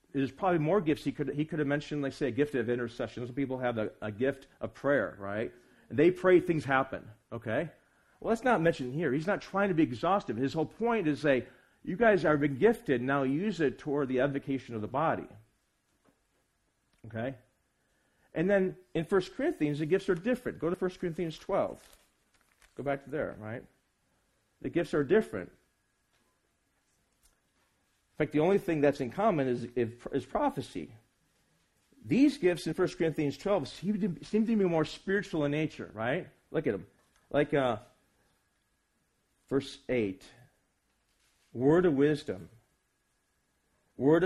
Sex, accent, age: male, American, 40-59